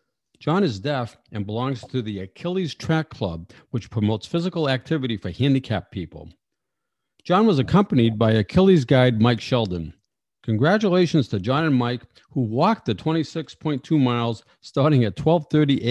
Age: 50-69